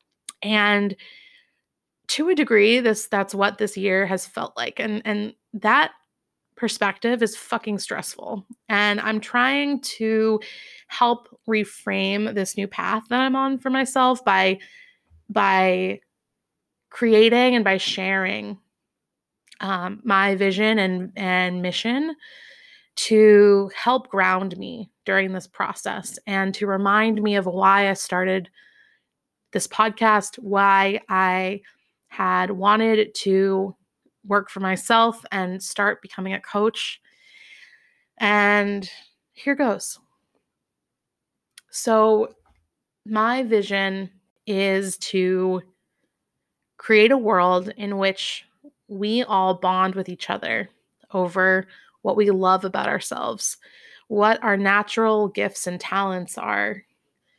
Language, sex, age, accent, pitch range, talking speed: English, female, 20-39, American, 190-225 Hz, 110 wpm